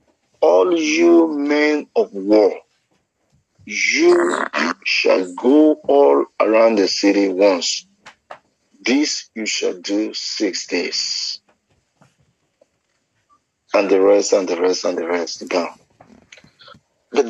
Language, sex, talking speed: English, male, 100 wpm